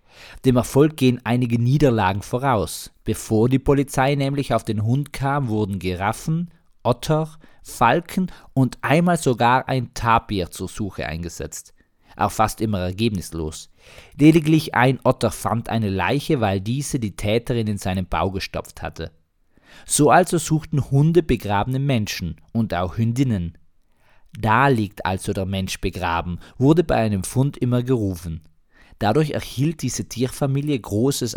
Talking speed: 135 wpm